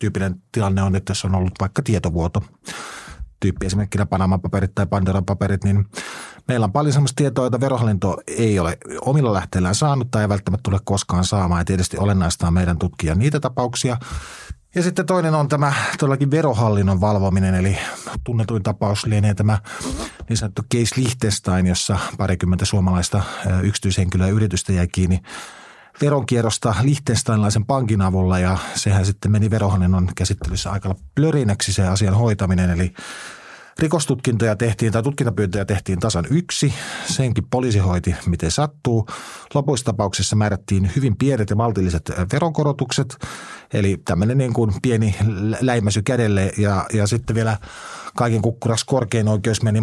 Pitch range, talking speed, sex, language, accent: 95-120 Hz, 135 wpm, male, Finnish, native